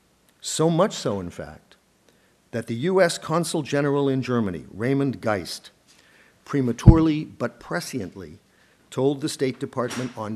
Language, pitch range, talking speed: English, 110-140 Hz, 125 wpm